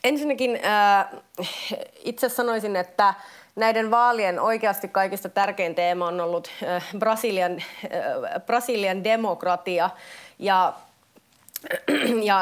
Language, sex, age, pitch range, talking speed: Finnish, female, 30-49, 185-230 Hz, 75 wpm